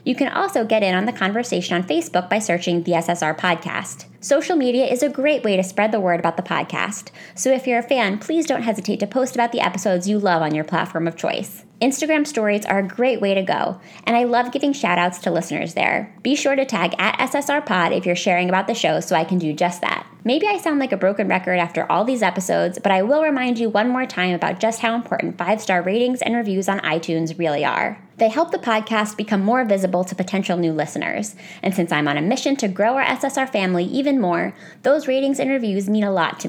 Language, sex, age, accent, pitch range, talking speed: English, female, 20-39, American, 185-260 Hz, 240 wpm